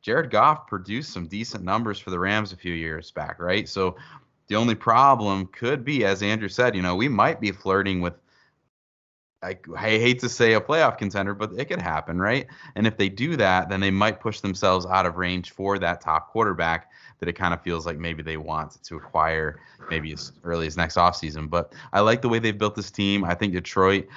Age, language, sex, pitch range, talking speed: 30-49, English, male, 85-105 Hz, 220 wpm